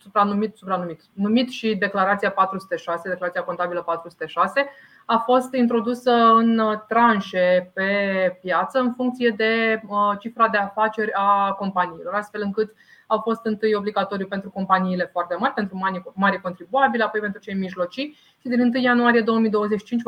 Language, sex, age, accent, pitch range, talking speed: Romanian, female, 20-39, native, 190-230 Hz, 140 wpm